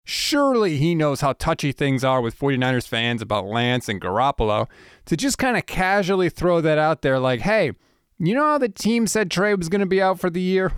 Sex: male